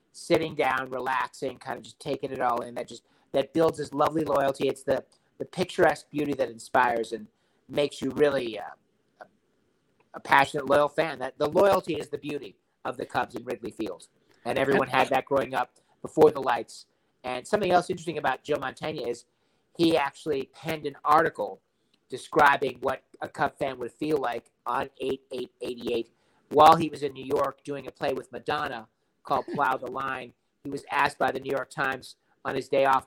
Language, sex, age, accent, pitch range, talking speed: English, male, 50-69, American, 125-155 Hz, 190 wpm